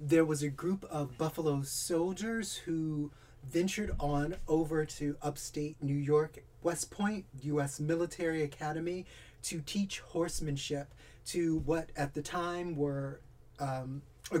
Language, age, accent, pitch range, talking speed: English, 30-49, American, 135-165 Hz, 130 wpm